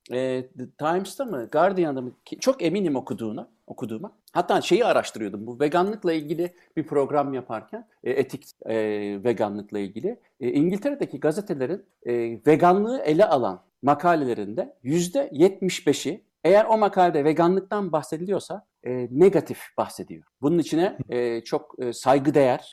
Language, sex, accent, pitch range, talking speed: Turkish, male, native, 125-180 Hz, 120 wpm